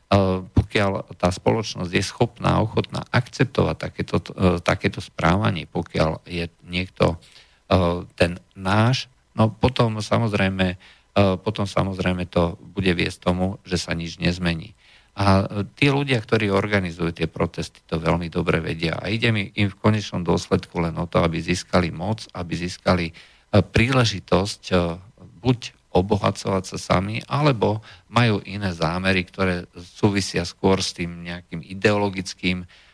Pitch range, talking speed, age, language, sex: 90-100 Hz, 130 wpm, 50-69, Slovak, male